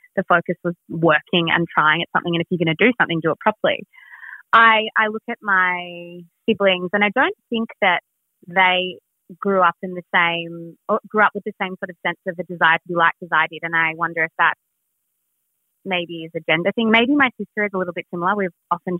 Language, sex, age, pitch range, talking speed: English, female, 20-39, 170-195 Hz, 225 wpm